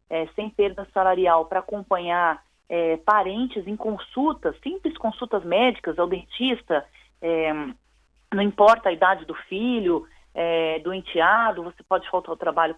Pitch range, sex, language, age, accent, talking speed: 175-230 Hz, female, Portuguese, 30-49, Brazilian, 140 wpm